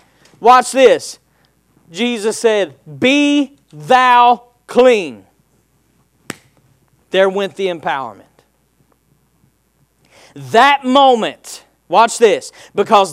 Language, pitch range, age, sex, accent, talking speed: English, 190-255 Hz, 40-59, male, American, 75 wpm